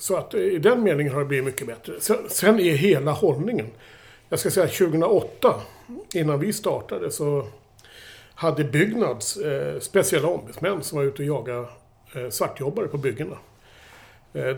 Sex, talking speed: male, 155 wpm